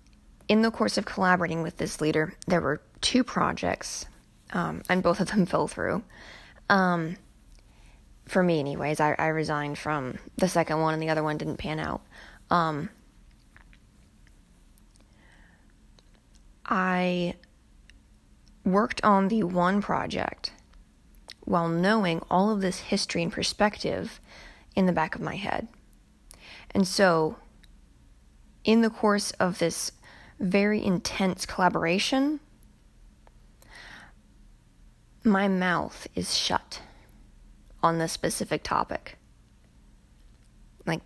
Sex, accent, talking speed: female, American, 115 wpm